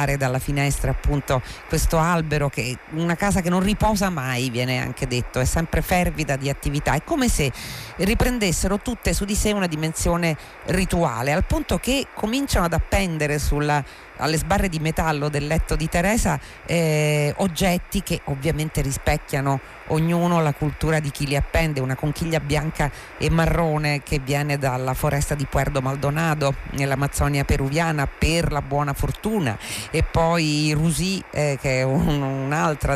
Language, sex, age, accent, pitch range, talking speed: Italian, female, 40-59, native, 140-165 Hz, 155 wpm